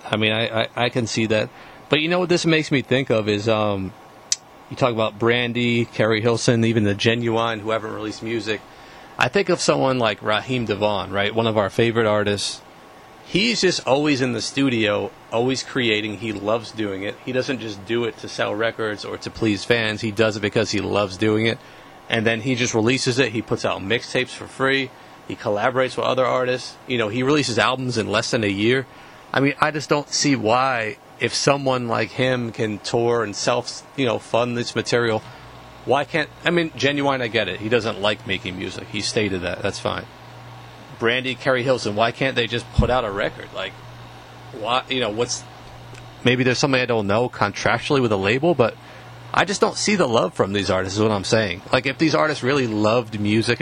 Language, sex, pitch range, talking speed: English, male, 110-130 Hz, 215 wpm